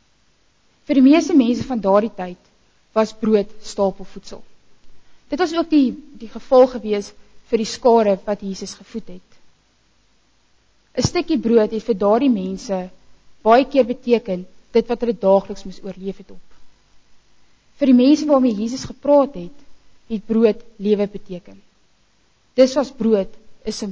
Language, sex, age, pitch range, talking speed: English, female, 20-39, 205-255 Hz, 145 wpm